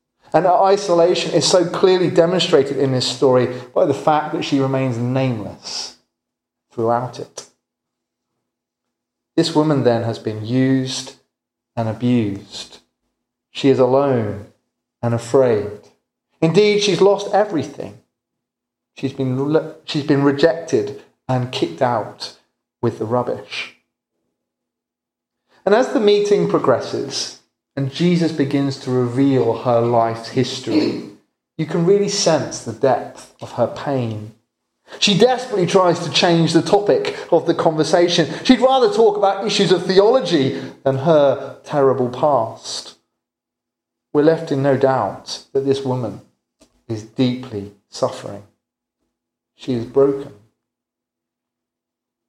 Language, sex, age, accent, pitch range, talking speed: English, male, 30-49, British, 100-165 Hz, 120 wpm